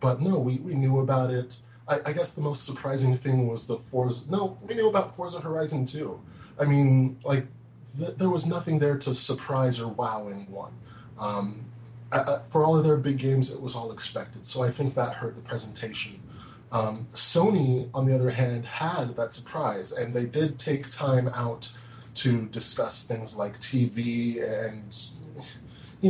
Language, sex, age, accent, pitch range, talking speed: English, male, 20-39, American, 120-135 Hz, 180 wpm